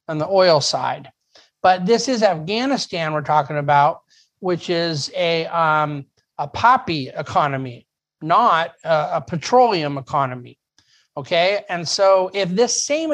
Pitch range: 145-195 Hz